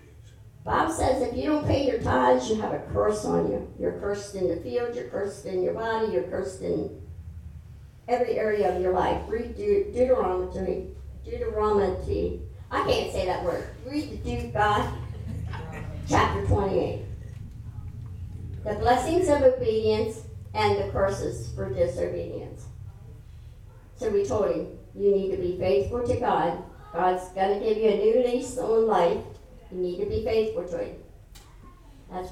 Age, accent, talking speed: 60-79, American, 150 wpm